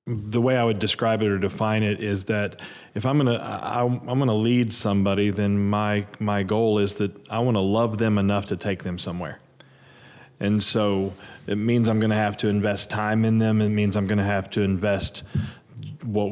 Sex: male